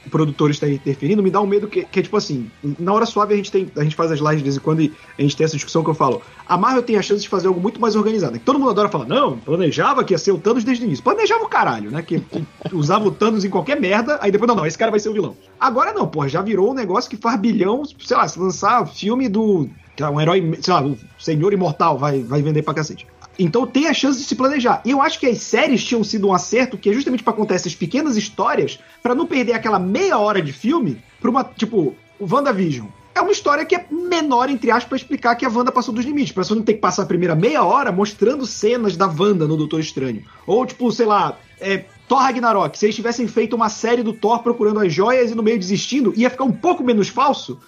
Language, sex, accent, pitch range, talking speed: Portuguese, male, Brazilian, 180-250 Hz, 265 wpm